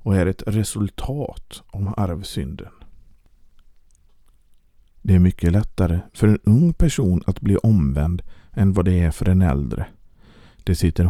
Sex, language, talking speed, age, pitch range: male, Swedish, 140 wpm, 50-69, 85-105 Hz